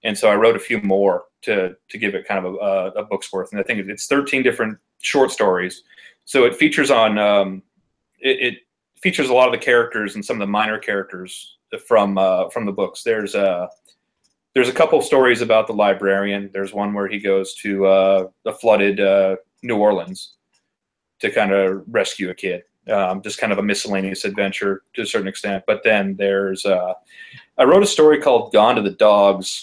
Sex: male